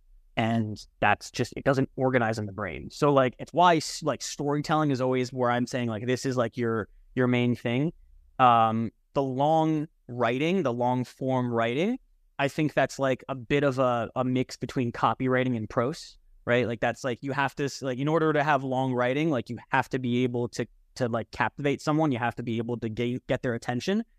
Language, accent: English, American